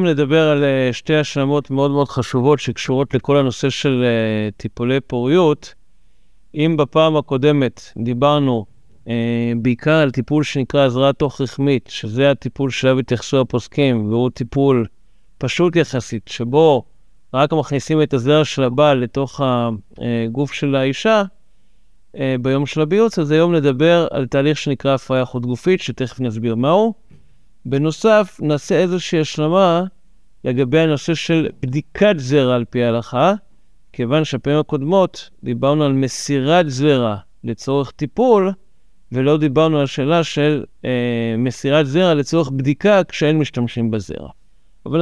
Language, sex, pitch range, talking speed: Hebrew, male, 130-155 Hz, 125 wpm